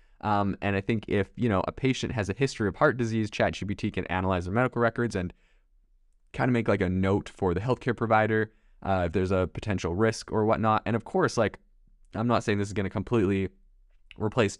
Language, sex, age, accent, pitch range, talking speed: English, male, 20-39, American, 95-110 Hz, 220 wpm